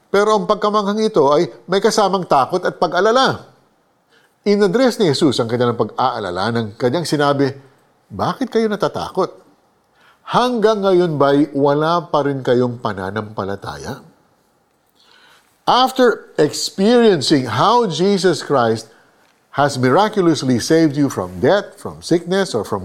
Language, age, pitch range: Filipino, 50-69, 130-205 Hz